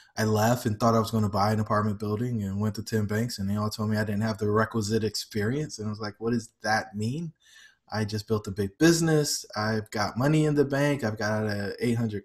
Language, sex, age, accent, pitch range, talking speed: English, male, 20-39, American, 110-130 Hz, 255 wpm